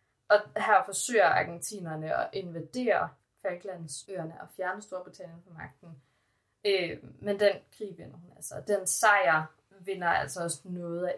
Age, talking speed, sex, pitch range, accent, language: 20-39, 135 wpm, female, 160-215 Hz, native, Danish